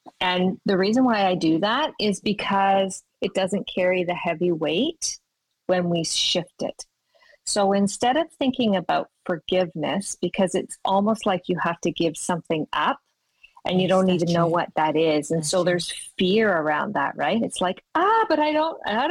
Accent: American